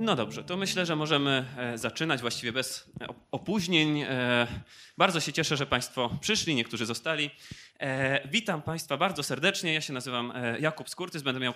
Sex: male